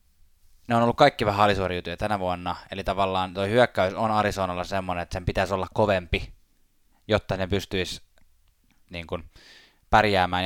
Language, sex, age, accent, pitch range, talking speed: Finnish, male, 20-39, native, 90-110 Hz, 145 wpm